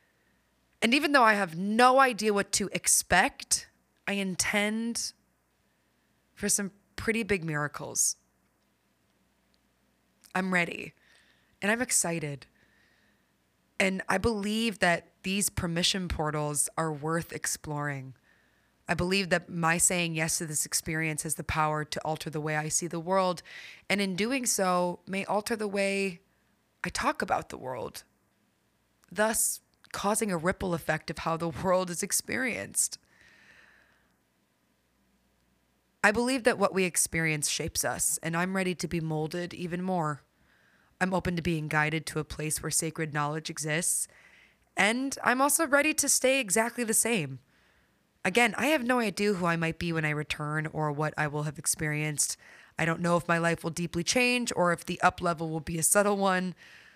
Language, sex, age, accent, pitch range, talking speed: English, female, 20-39, American, 155-205 Hz, 160 wpm